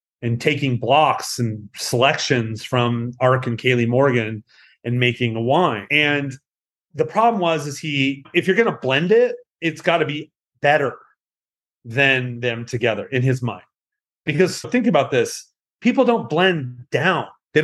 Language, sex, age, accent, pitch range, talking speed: English, male, 30-49, American, 125-170 Hz, 155 wpm